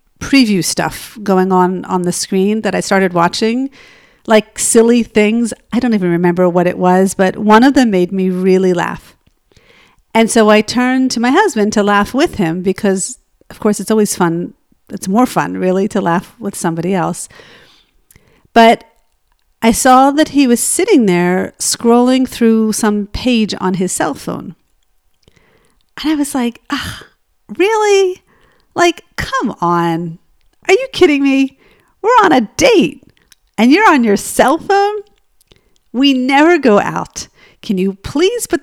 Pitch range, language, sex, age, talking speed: 190-285 Hz, English, female, 50-69, 160 wpm